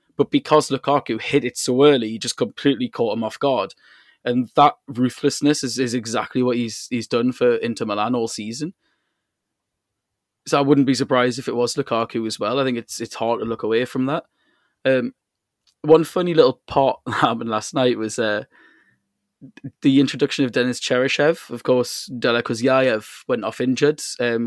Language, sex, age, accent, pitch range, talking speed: English, male, 20-39, British, 115-140 Hz, 180 wpm